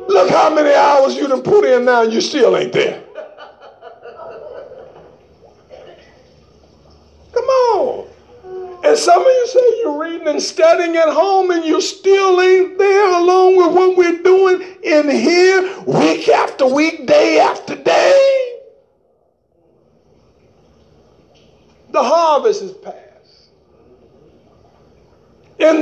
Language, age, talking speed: English, 50-69, 115 wpm